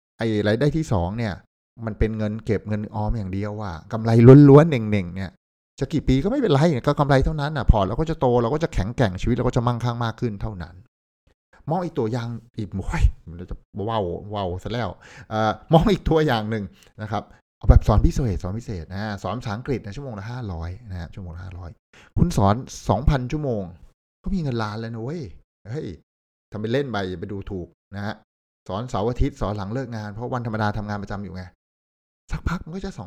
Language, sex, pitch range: Thai, male, 95-125 Hz